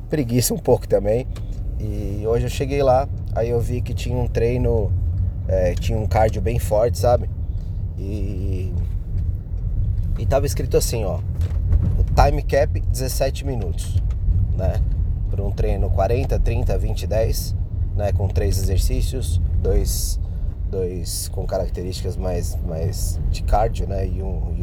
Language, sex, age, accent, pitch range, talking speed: Portuguese, male, 20-39, Brazilian, 90-105 Hz, 140 wpm